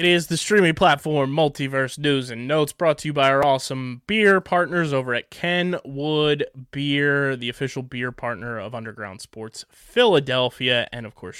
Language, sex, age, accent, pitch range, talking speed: English, male, 20-39, American, 120-150 Hz, 170 wpm